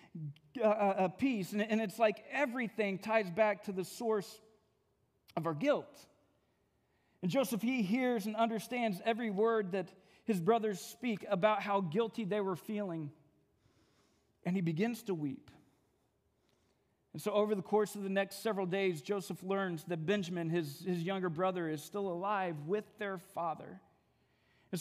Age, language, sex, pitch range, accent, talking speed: 40-59, English, male, 175-220 Hz, American, 150 wpm